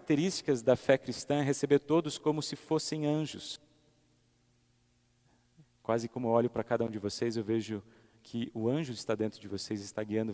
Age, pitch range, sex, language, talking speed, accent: 40-59, 115-150 Hz, male, Portuguese, 180 wpm, Brazilian